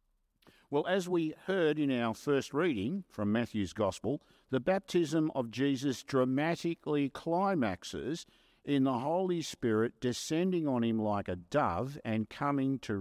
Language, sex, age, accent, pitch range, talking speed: English, male, 50-69, Australian, 110-155 Hz, 140 wpm